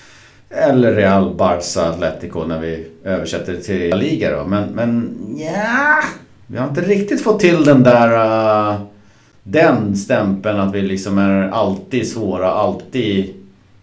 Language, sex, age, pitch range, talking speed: Swedish, male, 50-69, 95-120 Hz, 140 wpm